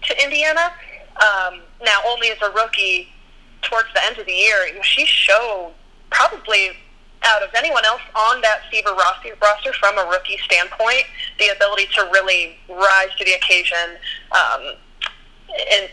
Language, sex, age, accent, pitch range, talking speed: English, female, 30-49, American, 190-235 Hz, 145 wpm